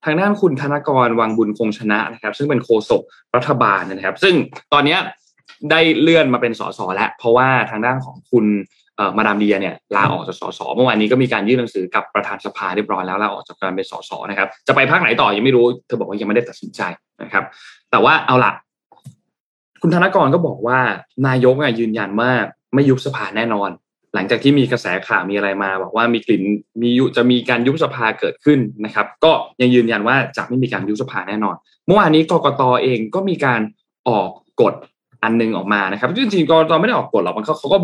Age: 20-39